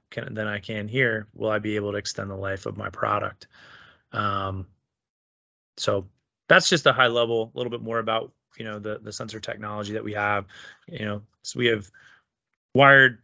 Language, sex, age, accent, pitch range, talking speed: English, male, 20-39, American, 100-115 Hz, 190 wpm